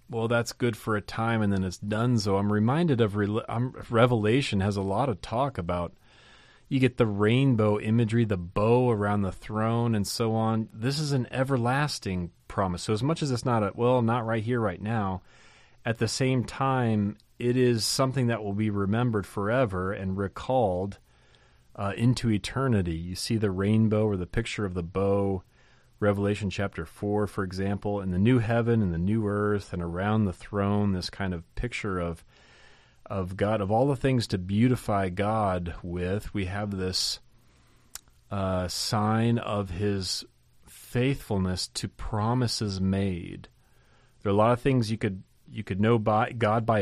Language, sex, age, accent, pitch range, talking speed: English, male, 30-49, American, 100-120 Hz, 175 wpm